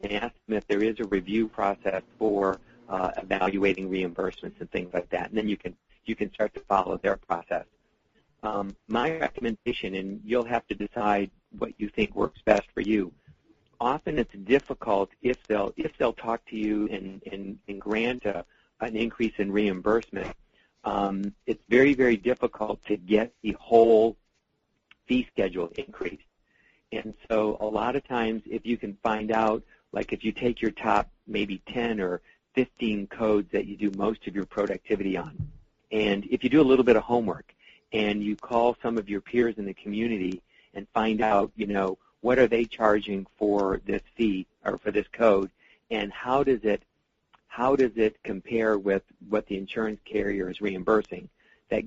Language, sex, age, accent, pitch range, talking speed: English, male, 50-69, American, 100-115 Hz, 180 wpm